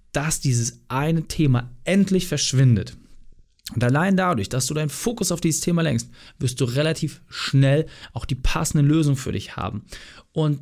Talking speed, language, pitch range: 165 wpm, German, 120-150 Hz